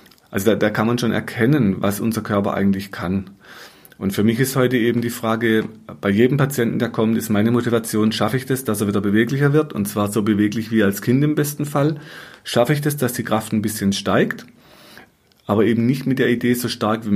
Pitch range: 105-125 Hz